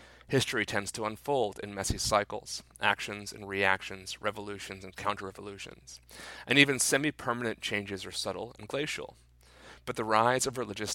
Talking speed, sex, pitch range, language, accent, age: 145 wpm, male, 95-120 Hz, English, American, 30-49